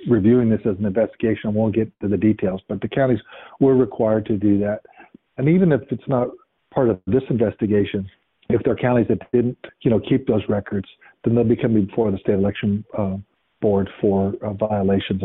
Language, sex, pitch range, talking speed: English, male, 105-130 Hz, 205 wpm